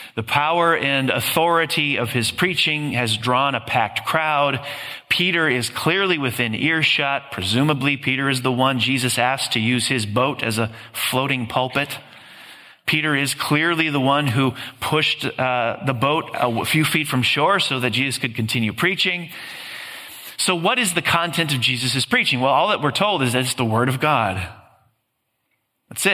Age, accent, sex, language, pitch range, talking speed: 30-49, American, male, English, 120-145 Hz, 170 wpm